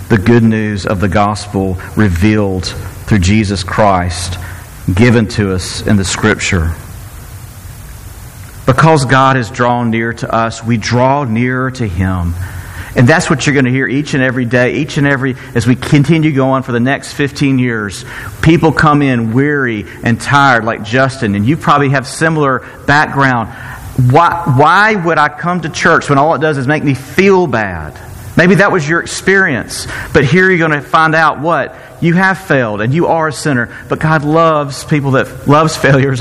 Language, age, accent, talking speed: English, 40-59, American, 180 wpm